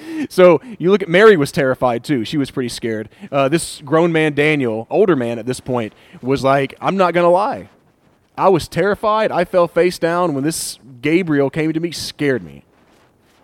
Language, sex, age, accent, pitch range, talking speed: English, male, 30-49, American, 115-170 Hz, 195 wpm